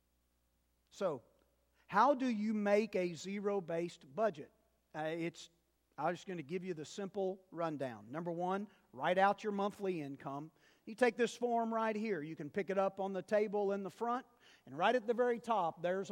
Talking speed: 180 wpm